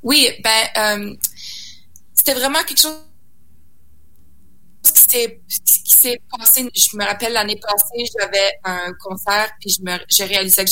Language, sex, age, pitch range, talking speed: French, female, 20-39, 170-205 Hz, 140 wpm